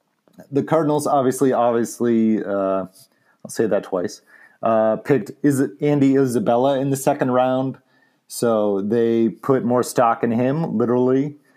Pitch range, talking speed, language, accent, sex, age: 115-140 Hz, 135 wpm, English, American, male, 30-49